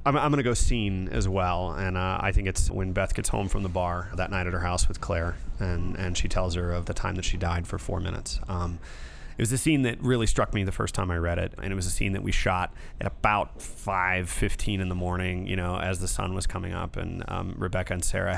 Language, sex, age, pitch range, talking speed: English, male, 30-49, 90-100 Hz, 275 wpm